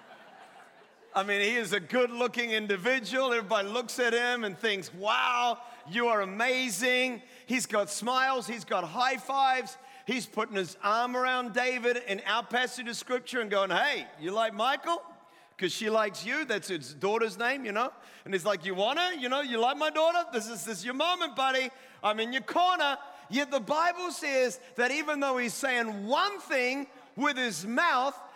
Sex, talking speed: male, 185 wpm